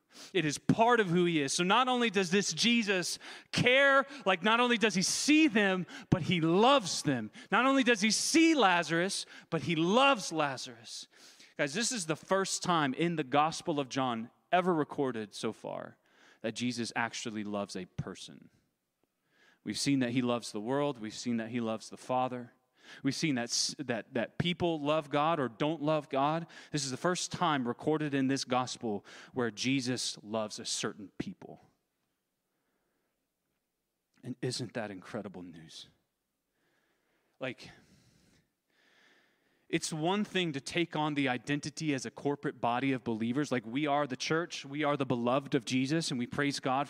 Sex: male